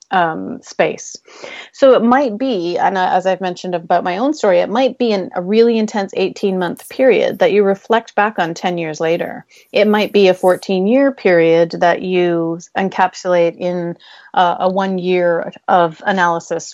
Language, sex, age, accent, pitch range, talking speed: English, female, 30-49, American, 170-210 Hz, 175 wpm